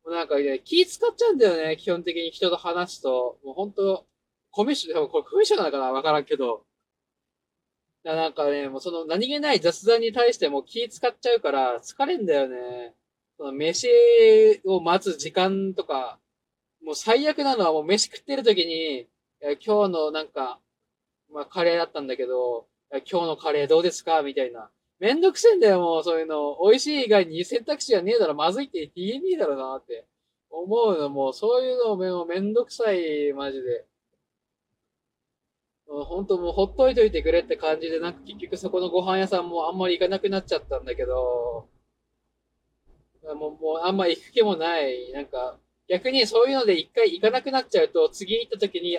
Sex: male